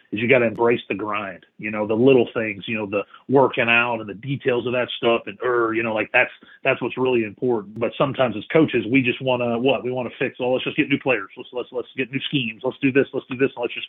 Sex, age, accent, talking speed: male, 40-59, American, 285 wpm